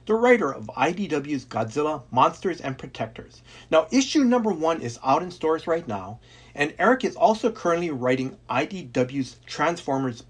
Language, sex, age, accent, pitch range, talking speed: English, male, 40-59, American, 125-175 Hz, 150 wpm